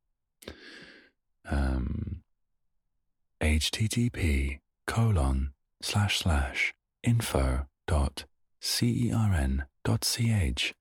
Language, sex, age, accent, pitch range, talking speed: English, male, 30-49, British, 70-95 Hz, 55 wpm